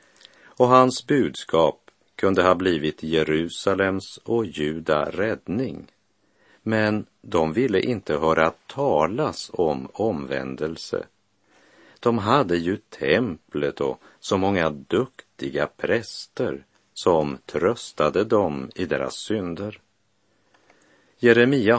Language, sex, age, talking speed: Swedish, male, 50-69, 95 wpm